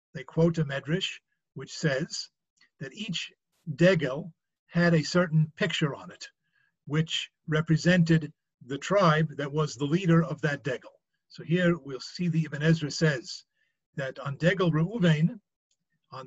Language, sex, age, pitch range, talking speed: English, male, 50-69, 150-175 Hz, 145 wpm